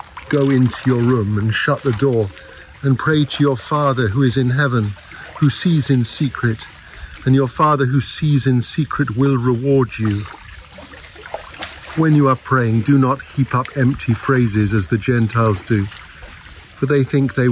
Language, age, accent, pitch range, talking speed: English, 50-69, British, 105-135 Hz, 170 wpm